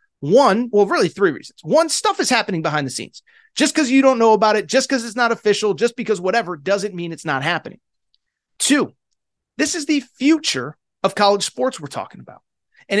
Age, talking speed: 30-49, 205 wpm